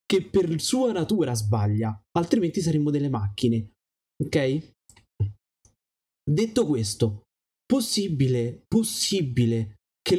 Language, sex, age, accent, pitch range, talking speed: Italian, male, 20-39, native, 120-180 Hz, 90 wpm